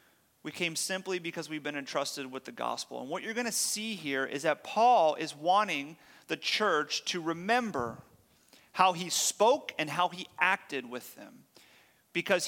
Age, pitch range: 30-49, 145-190 Hz